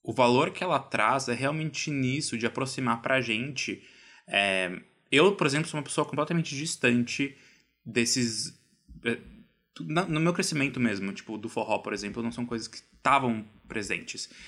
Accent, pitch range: Brazilian, 120-150 Hz